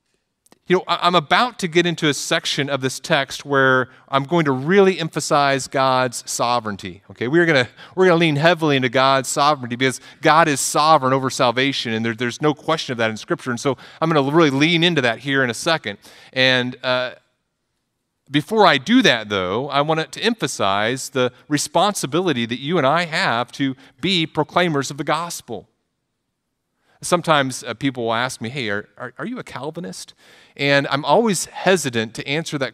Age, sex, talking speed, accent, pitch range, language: 40-59, male, 190 wpm, American, 120-160 Hz, English